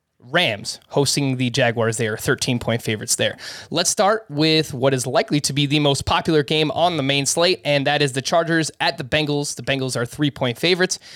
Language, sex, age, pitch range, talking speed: English, male, 20-39, 130-165 Hz, 215 wpm